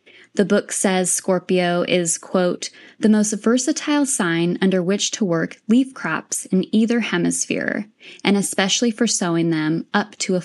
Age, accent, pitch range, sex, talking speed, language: 10-29, American, 170-220 Hz, female, 155 wpm, English